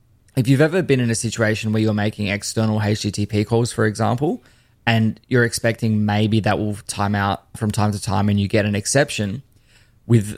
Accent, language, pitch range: Australian, English, 105-115 Hz